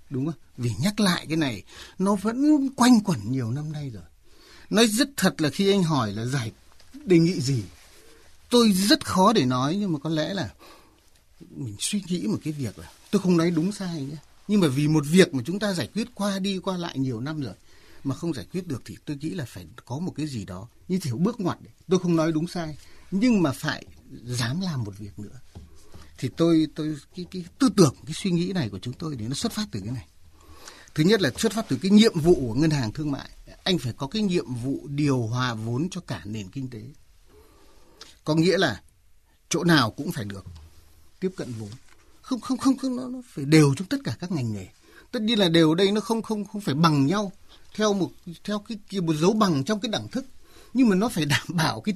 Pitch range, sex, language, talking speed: 120-190 Hz, male, Vietnamese, 240 wpm